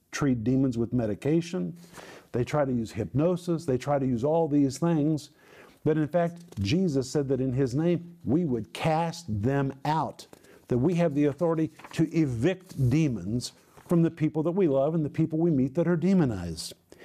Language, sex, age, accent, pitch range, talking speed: English, male, 50-69, American, 140-175 Hz, 185 wpm